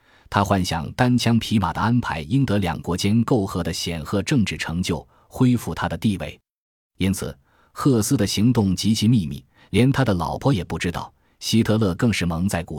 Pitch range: 85-115 Hz